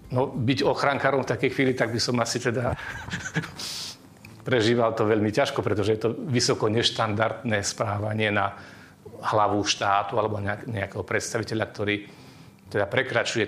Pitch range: 105-125 Hz